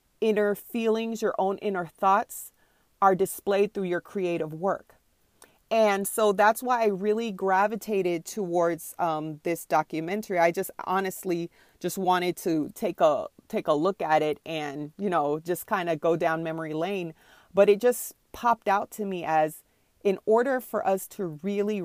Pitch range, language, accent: 170-210 Hz, English, American